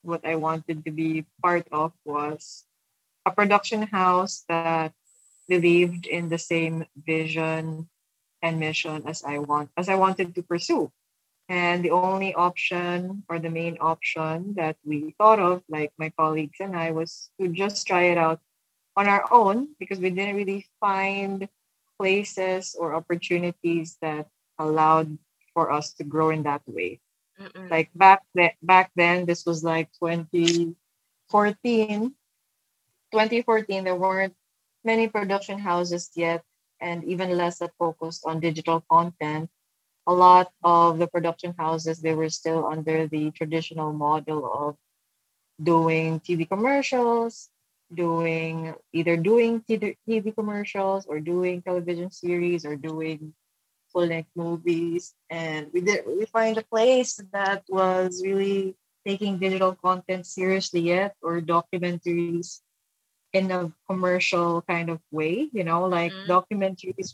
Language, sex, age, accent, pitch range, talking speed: English, female, 20-39, Filipino, 160-190 Hz, 135 wpm